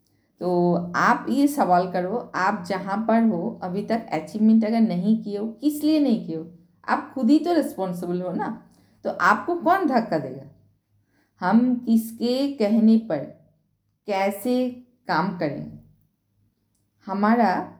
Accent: native